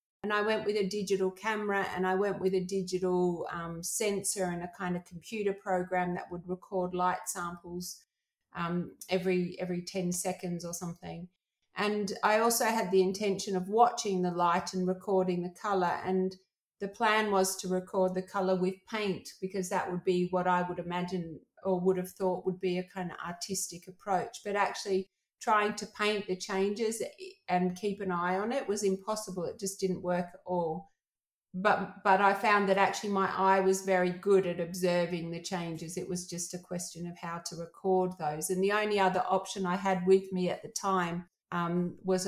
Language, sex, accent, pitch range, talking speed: English, female, Australian, 180-195 Hz, 195 wpm